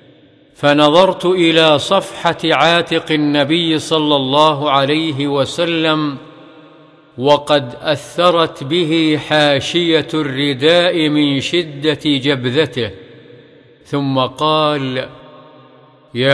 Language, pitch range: Arabic, 140-160 Hz